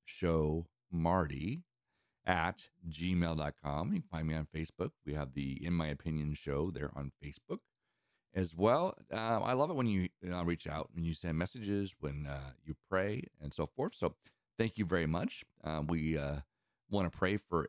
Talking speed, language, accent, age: 185 wpm, English, American, 50-69